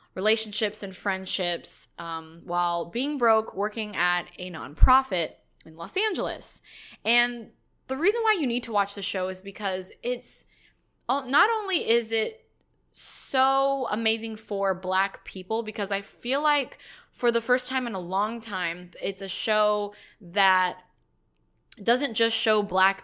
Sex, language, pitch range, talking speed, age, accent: female, English, 185-225 Hz, 145 wpm, 20-39, American